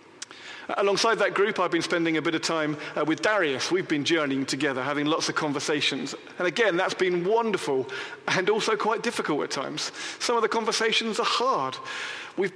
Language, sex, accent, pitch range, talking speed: English, male, British, 155-225 Hz, 185 wpm